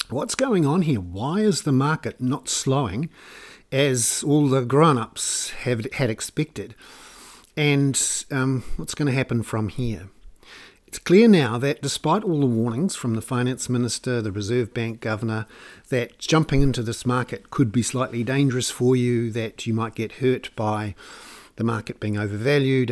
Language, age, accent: English, 50-69, Australian